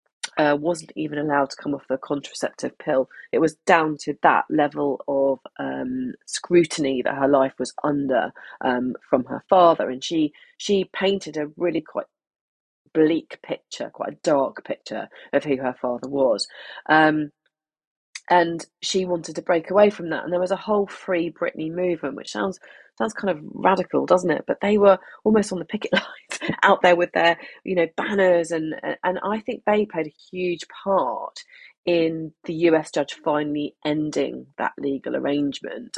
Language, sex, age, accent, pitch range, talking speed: English, female, 30-49, British, 150-195 Hz, 175 wpm